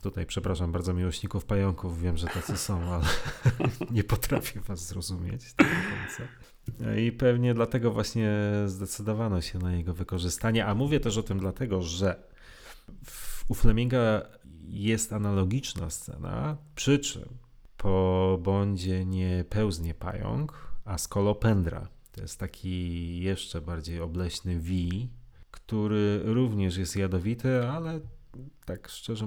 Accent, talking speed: native, 120 wpm